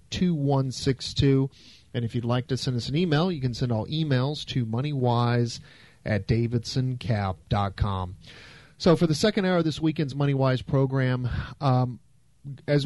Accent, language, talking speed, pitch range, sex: American, English, 165 wpm, 115-135 Hz, male